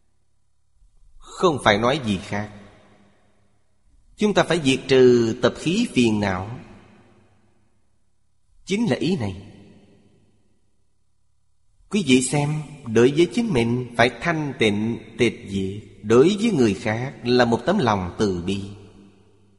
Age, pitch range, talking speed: 30-49, 100-140 Hz, 125 wpm